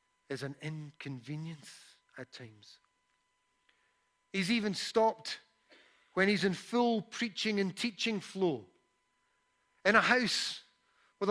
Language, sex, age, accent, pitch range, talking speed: English, male, 50-69, British, 150-235 Hz, 105 wpm